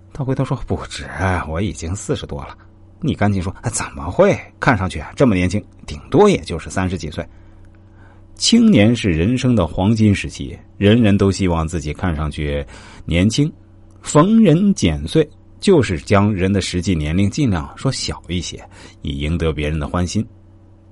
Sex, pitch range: male, 85-115 Hz